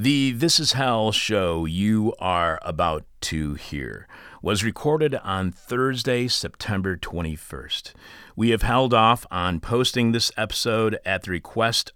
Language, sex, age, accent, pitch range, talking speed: English, male, 40-59, American, 95-115 Hz, 135 wpm